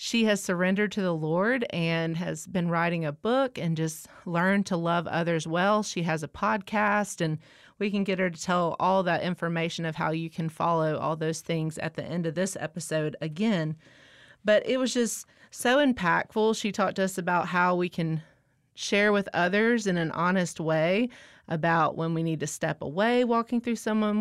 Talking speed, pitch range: 195 wpm, 160-200 Hz